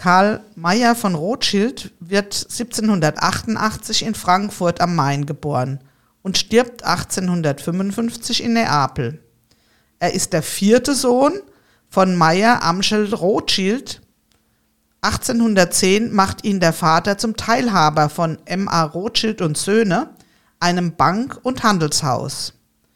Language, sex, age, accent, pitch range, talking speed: German, female, 50-69, German, 160-225 Hz, 105 wpm